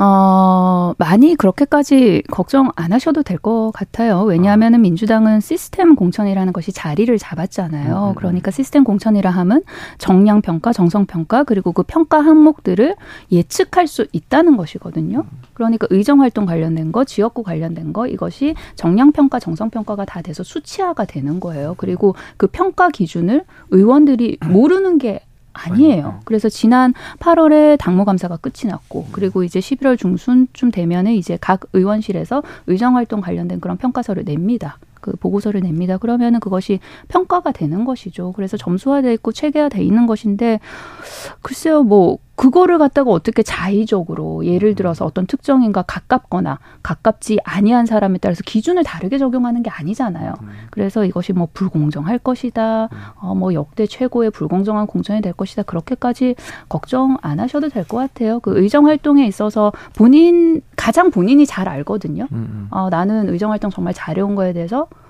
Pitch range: 180-255 Hz